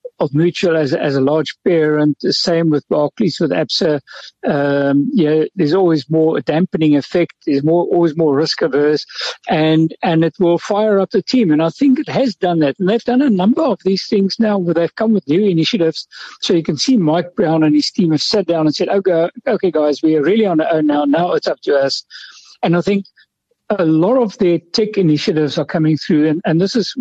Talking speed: 225 wpm